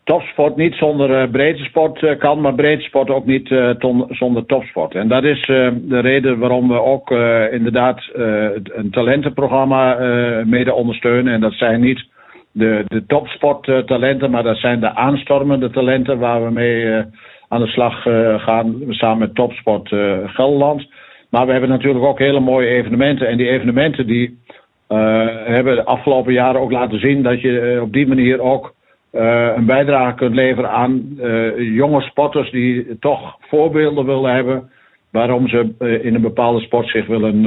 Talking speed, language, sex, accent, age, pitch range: 180 wpm, Dutch, male, Dutch, 60-79, 115-135 Hz